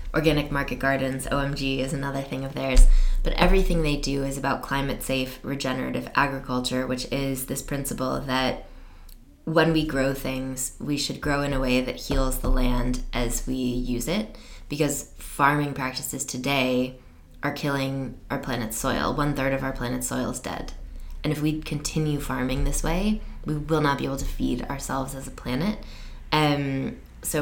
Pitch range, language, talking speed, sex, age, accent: 130-140 Hz, English, 175 wpm, female, 20-39, American